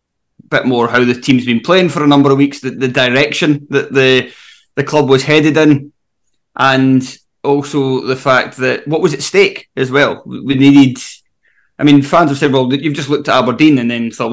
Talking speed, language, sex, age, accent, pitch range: 205 wpm, English, male, 20-39, British, 125-155 Hz